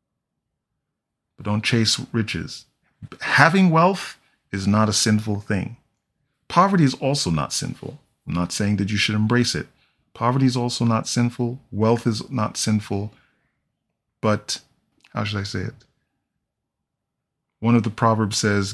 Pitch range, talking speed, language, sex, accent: 105-125 Hz, 140 wpm, English, male, American